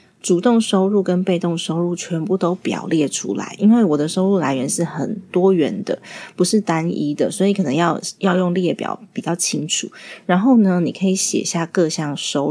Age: 30-49